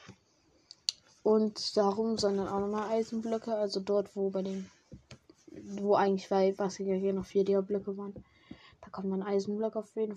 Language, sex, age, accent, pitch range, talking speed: German, female, 10-29, German, 195-220 Hz, 160 wpm